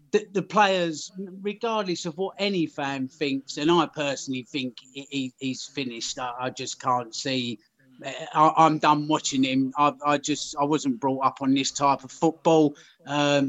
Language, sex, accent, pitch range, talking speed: English, male, British, 140-170 Hz, 170 wpm